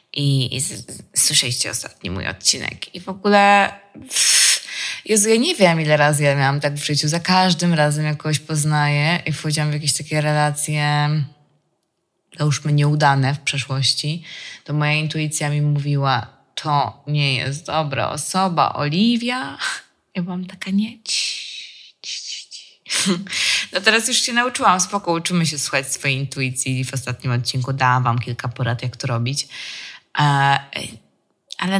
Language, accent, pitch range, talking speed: Polish, native, 140-185 Hz, 150 wpm